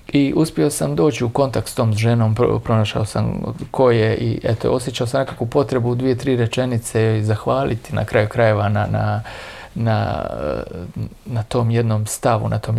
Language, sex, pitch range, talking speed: Croatian, male, 110-120 Hz, 170 wpm